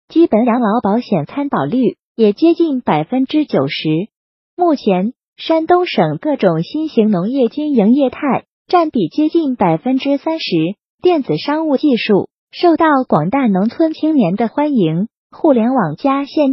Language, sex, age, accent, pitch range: Chinese, female, 30-49, native, 210-310 Hz